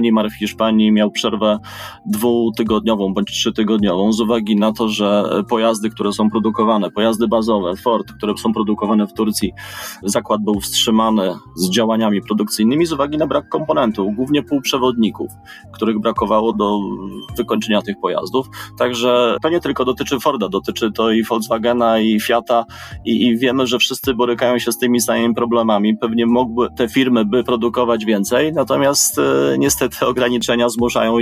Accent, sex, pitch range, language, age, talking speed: native, male, 110-125 Hz, Polish, 30-49, 155 wpm